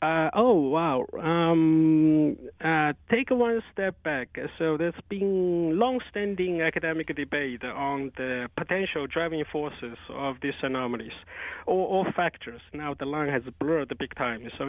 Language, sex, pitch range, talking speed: English, male, 135-165 Hz, 145 wpm